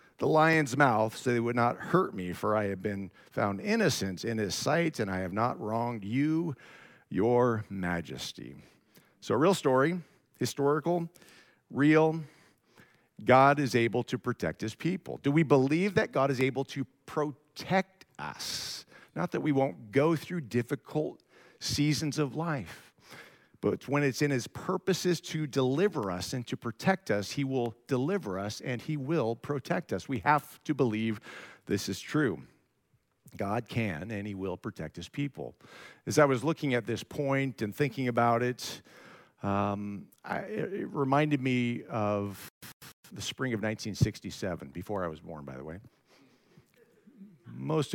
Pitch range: 105-150 Hz